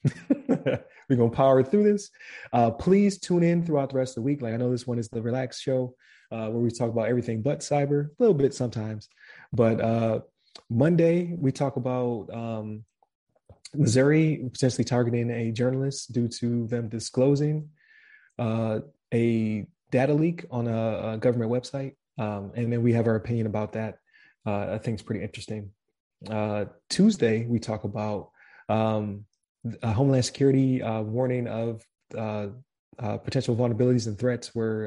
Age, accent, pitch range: 20-39, American, 110-130 Hz